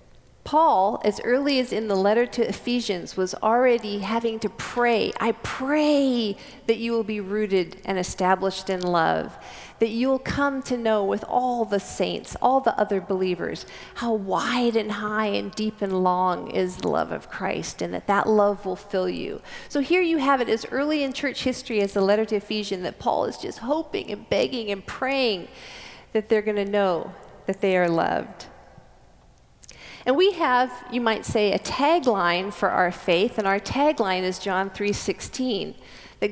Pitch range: 195-255 Hz